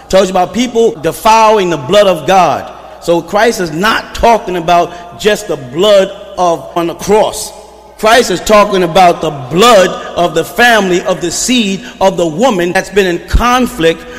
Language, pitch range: English, 175-225 Hz